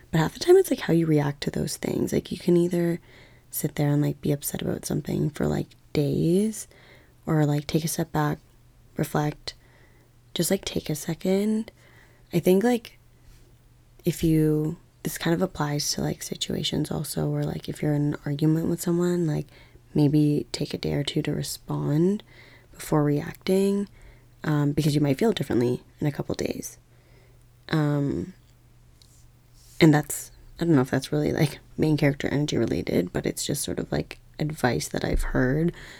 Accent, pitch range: American, 125-165 Hz